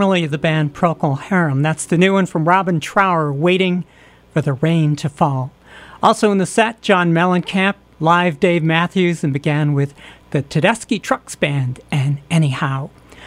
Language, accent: English, American